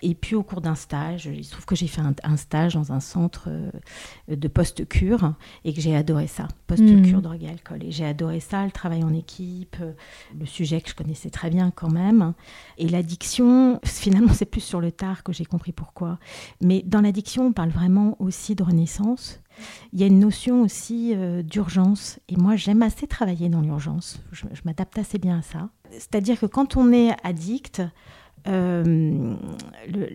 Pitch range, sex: 170-210 Hz, female